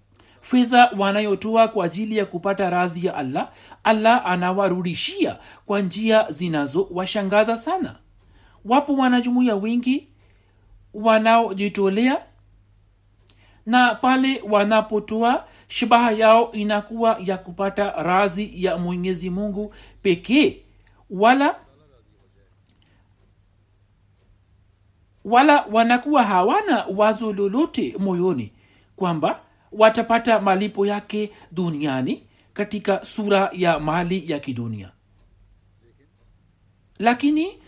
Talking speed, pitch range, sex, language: 80 wpm, 145-235 Hz, male, Swahili